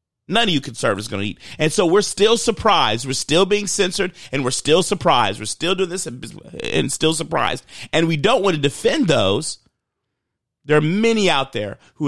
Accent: American